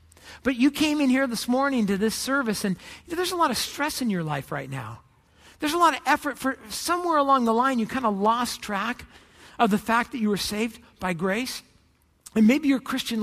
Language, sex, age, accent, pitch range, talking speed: English, male, 50-69, American, 185-260 Hz, 220 wpm